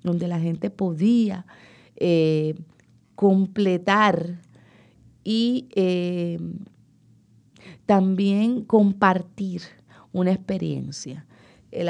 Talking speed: 65 wpm